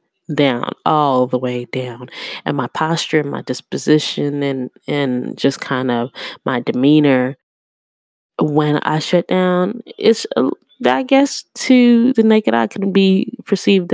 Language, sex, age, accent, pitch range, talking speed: English, female, 20-39, American, 135-185 Hz, 140 wpm